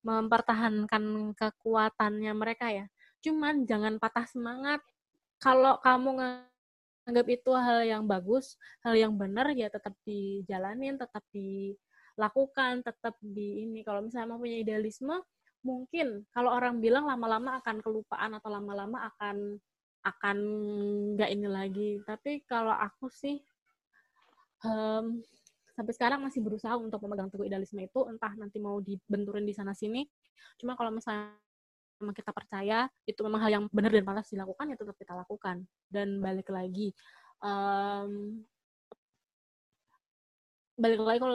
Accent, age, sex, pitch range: native, 20-39, female, 205-250 Hz